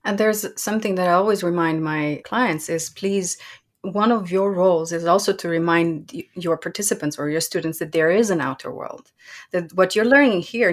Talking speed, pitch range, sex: 200 wpm, 175-220 Hz, female